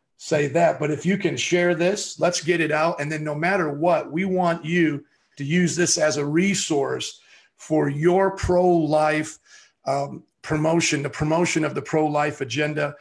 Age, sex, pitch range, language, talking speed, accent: 40-59, male, 155-190 Hz, English, 180 wpm, American